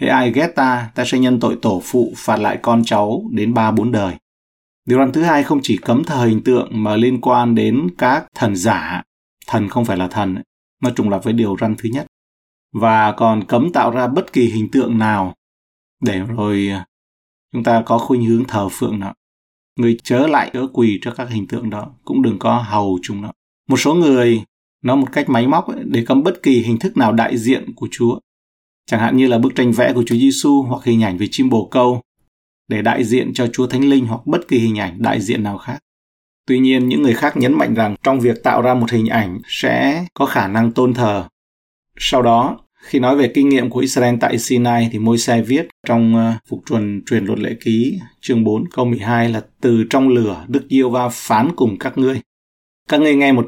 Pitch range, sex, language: 105-125 Hz, male, Vietnamese